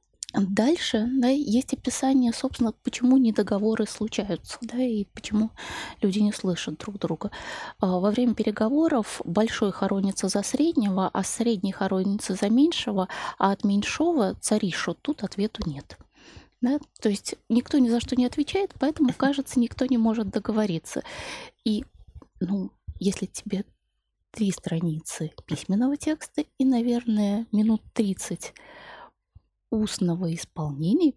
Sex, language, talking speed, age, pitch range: female, Russian, 125 wpm, 20-39, 185-250 Hz